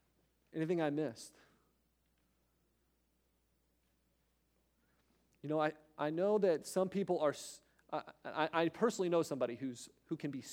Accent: American